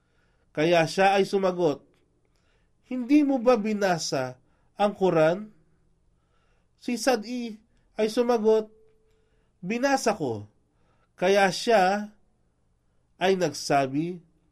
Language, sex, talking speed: Filipino, male, 85 wpm